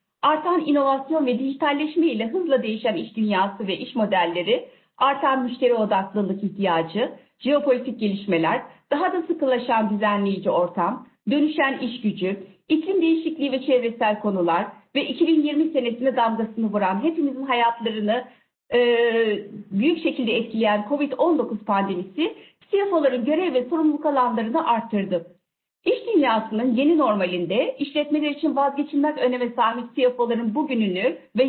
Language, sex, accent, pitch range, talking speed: Turkish, female, native, 220-305 Hz, 115 wpm